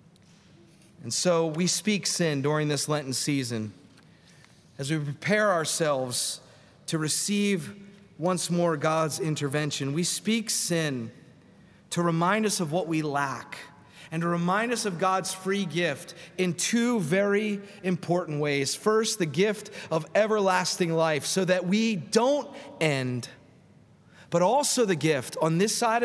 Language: English